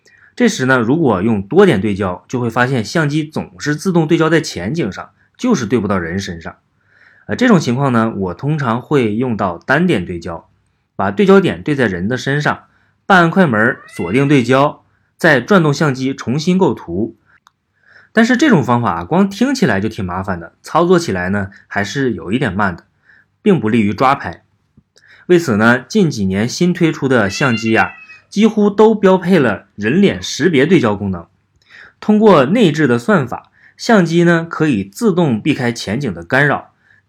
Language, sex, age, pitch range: Chinese, male, 20-39, 105-175 Hz